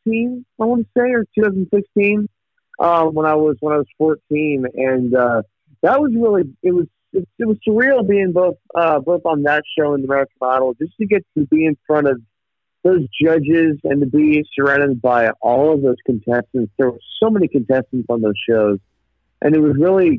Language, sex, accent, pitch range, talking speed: English, male, American, 115-155 Hz, 200 wpm